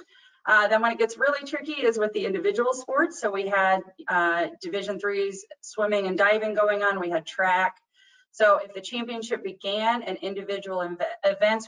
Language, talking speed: English, 180 wpm